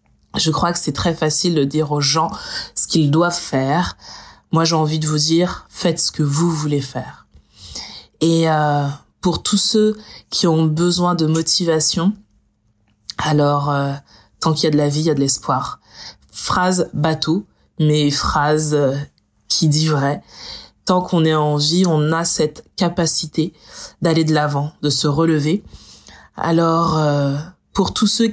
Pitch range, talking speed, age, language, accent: 150-175 Hz, 165 wpm, 20-39, French, French